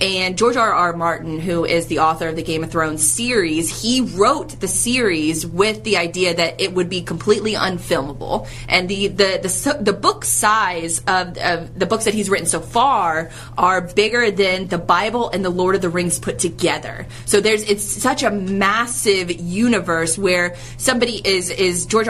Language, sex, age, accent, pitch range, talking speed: English, female, 20-39, American, 165-210 Hz, 190 wpm